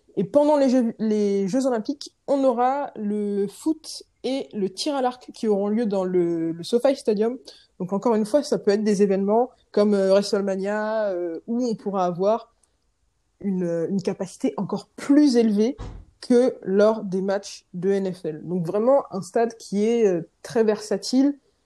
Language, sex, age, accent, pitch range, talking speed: French, female, 20-39, French, 195-245 Hz, 160 wpm